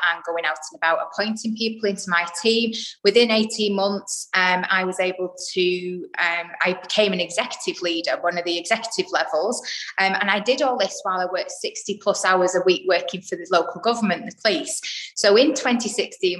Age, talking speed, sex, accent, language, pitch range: 20-39, 195 wpm, female, British, English, 170-195 Hz